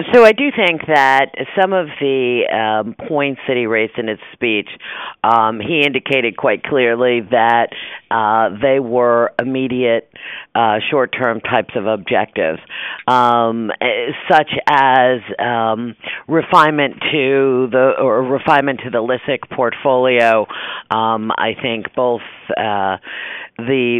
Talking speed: 125 wpm